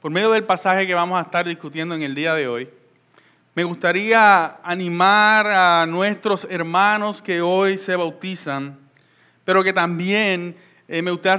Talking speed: 155 wpm